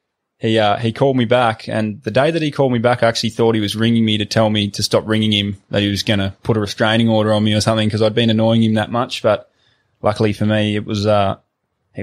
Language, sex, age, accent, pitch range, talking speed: English, male, 20-39, Australian, 105-115 Hz, 275 wpm